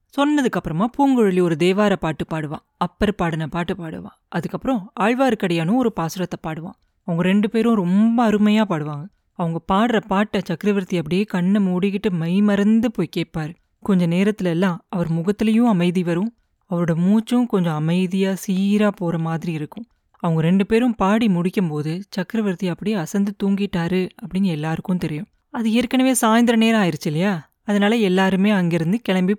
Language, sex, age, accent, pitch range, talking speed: Tamil, female, 30-49, native, 175-220 Hz, 140 wpm